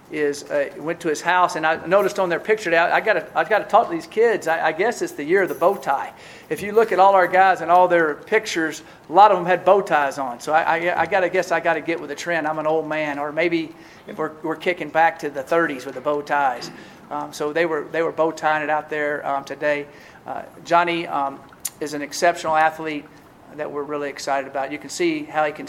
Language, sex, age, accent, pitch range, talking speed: English, male, 40-59, American, 150-180 Hz, 265 wpm